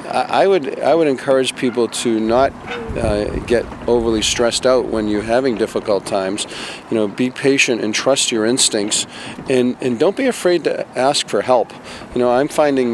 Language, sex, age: English, male, 40-59